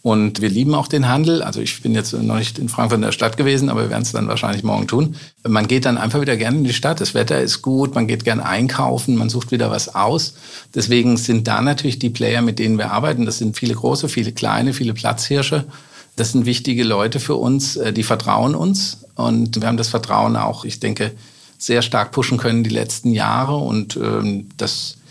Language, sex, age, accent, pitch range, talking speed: German, male, 50-69, German, 115-135 Hz, 220 wpm